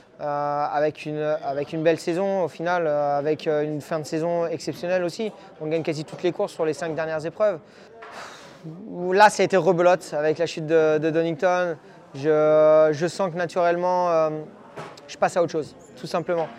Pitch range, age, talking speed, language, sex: 155-190 Hz, 20-39, 185 wpm, French, male